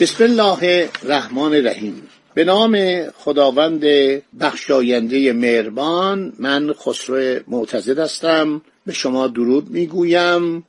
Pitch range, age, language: 140-190 Hz, 50-69, Persian